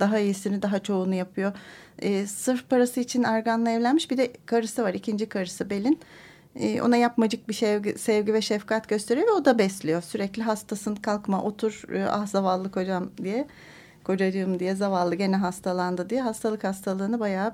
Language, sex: Turkish, female